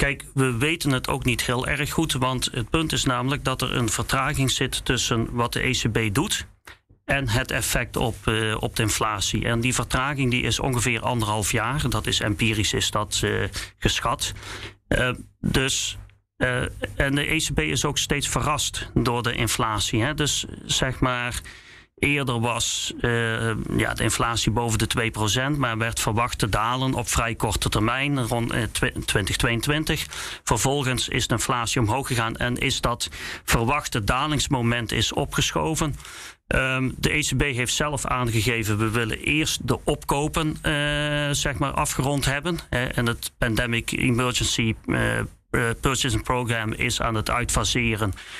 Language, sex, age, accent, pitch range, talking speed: Dutch, male, 40-59, Dutch, 115-135 Hz, 155 wpm